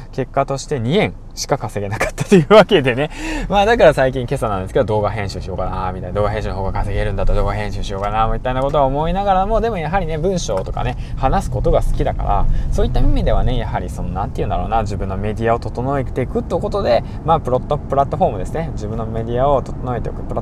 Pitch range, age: 105-135 Hz, 20-39